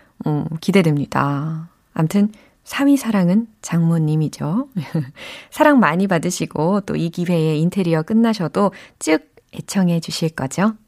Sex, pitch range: female, 155-225 Hz